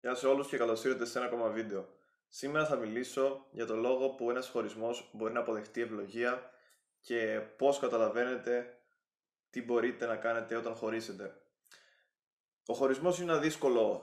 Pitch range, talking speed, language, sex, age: 110-130 Hz, 155 wpm, Greek, male, 20-39